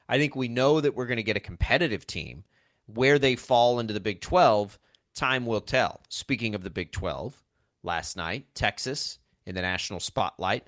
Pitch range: 95-125 Hz